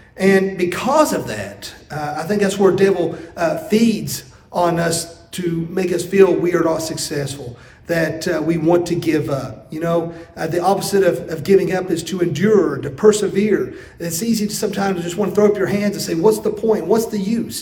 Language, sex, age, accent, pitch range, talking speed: English, male, 40-59, American, 165-200 Hz, 210 wpm